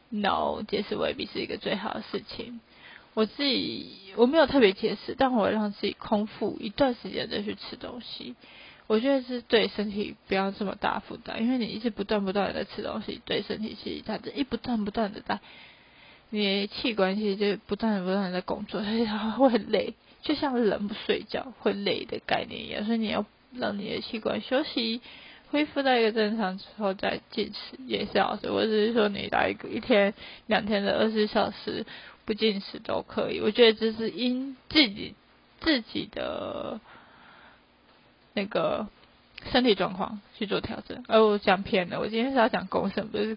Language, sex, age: Chinese, female, 20-39